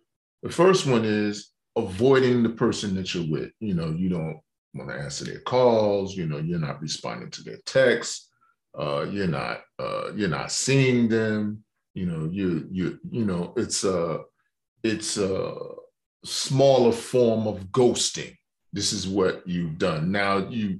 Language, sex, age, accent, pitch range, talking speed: English, male, 30-49, American, 95-145 Hz, 160 wpm